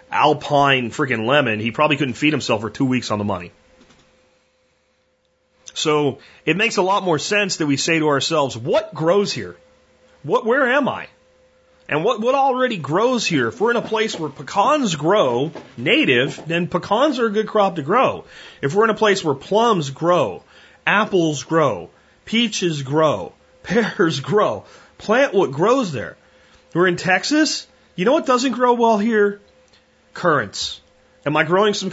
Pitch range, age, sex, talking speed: 135-200 Hz, 30-49, male, 170 wpm